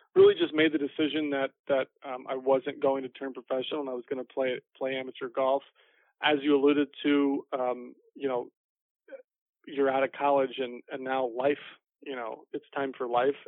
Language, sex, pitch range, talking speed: English, male, 125-140 Hz, 195 wpm